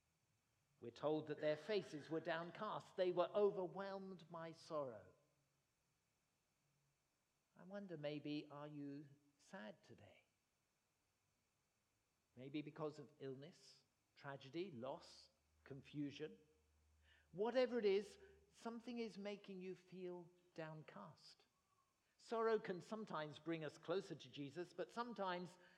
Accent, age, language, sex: British, 50-69, English, male